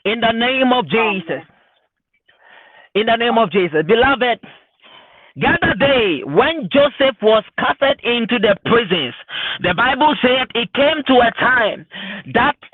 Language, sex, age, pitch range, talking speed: English, male, 50-69, 215-295 Hz, 140 wpm